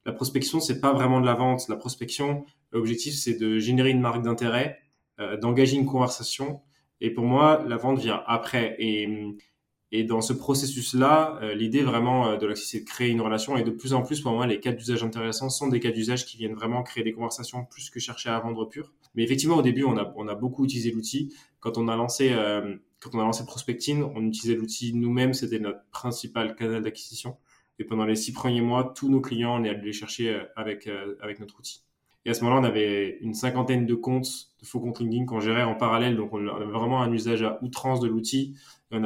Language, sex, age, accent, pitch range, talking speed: French, male, 20-39, French, 110-130 Hz, 225 wpm